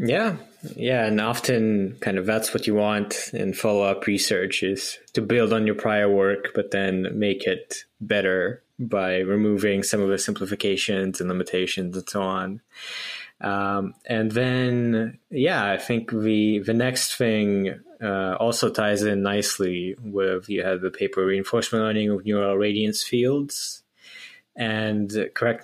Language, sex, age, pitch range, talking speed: English, male, 20-39, 100-115 Hz, 150 wpm